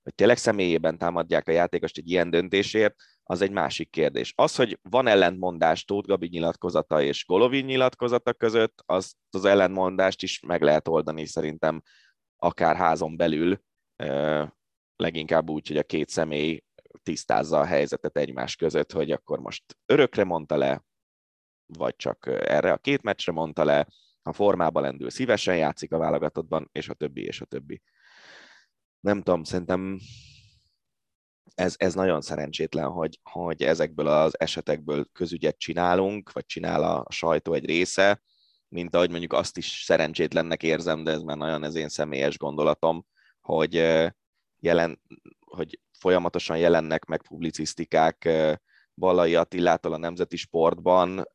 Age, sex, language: 20-39, male, Hungarian